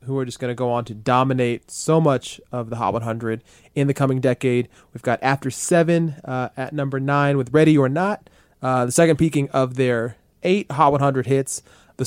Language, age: English, 20-39